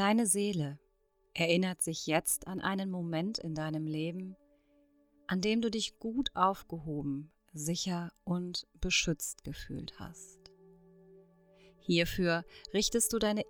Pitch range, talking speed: 155-205 Hz, 115 wpm